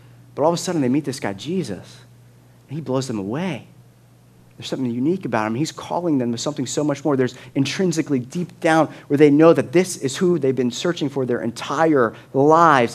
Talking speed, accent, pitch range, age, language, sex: 215 wpm, American, 125-175 Hz, 30-49, English, male